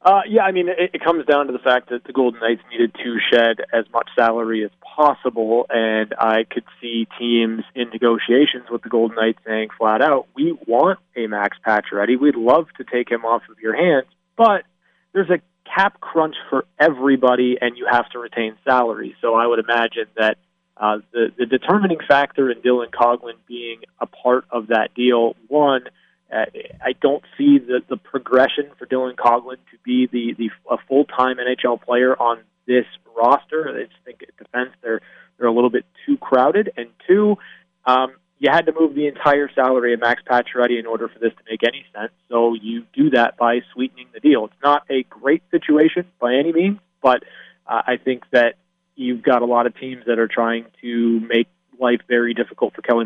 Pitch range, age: 115-145 Hz, 30-49